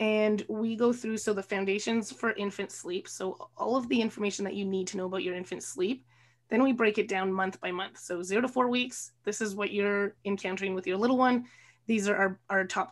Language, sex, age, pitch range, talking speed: English, female, 20-39, 190-230 Hz, 235 wpm